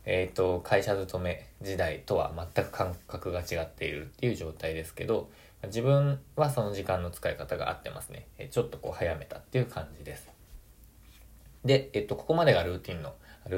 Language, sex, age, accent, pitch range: Japanese, male, 20-39, native, 80-120 Hz